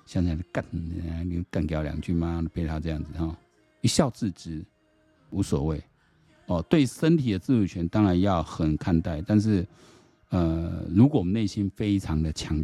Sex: male